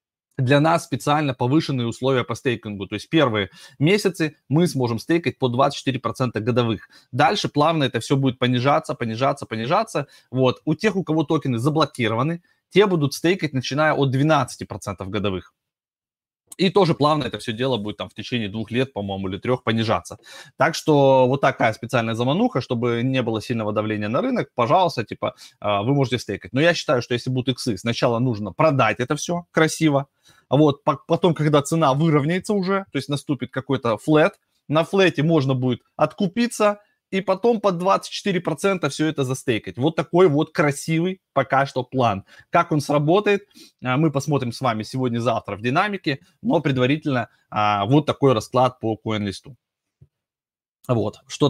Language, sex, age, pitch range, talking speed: Russian, male, 20-39, 115-155 Hz, 160 wpm